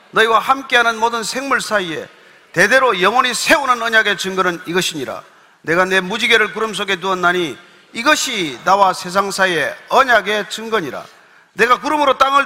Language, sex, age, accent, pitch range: Korean, male, 40-59, native, 185-255 Hz